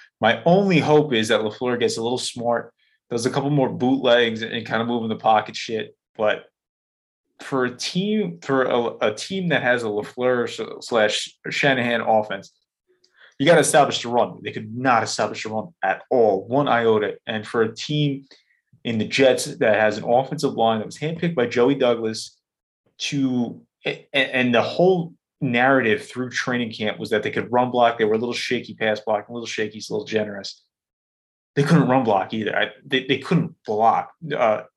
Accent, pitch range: American, 110-135 Hz